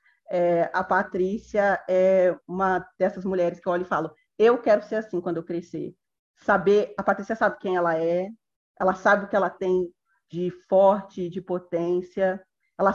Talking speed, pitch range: 170 wpm, 180-220 Hz